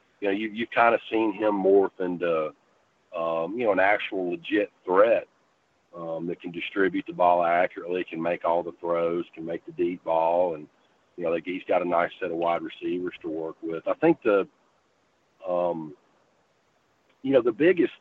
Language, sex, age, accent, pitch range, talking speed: English, male, 50-69, American, 85-110 Hz, 190 wpm